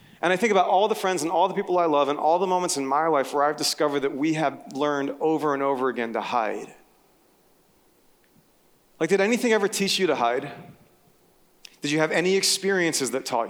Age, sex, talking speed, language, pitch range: 30-49, male, 215 wpm, English, 140-190 Hz